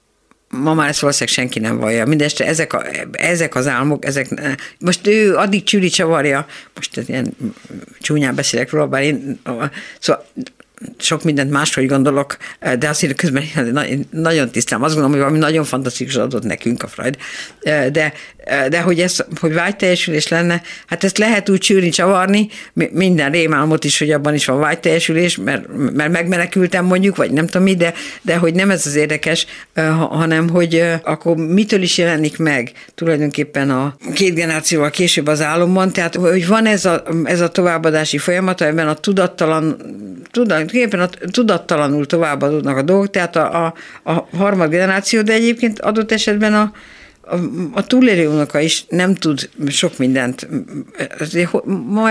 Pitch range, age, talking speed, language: 150-185 Hz, 60-79, 155 wpm, Hungarian